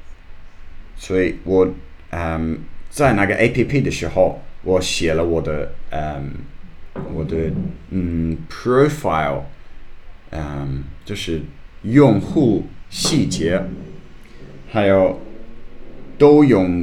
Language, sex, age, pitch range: English, male, 30-49, 80-100 Hz